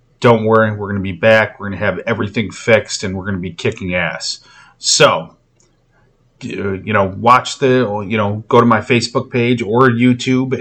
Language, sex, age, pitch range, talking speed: English, male, 30-49, 100-115 Hz, 190 wpm